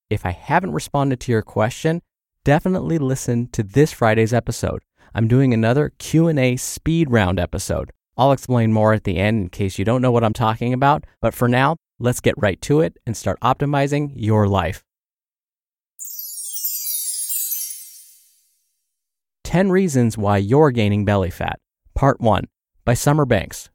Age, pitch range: 30-49, 105-145 Hz